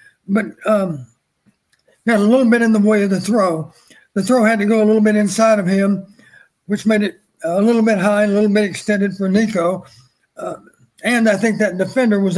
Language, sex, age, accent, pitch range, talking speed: English, male, 60-79, American, 190-220 Hz, 215 wpm